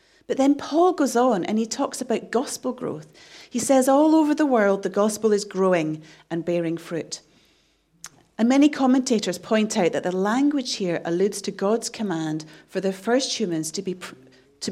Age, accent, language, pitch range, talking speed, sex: 40-59, British, English, 175-250 Hz, 180 wpm, female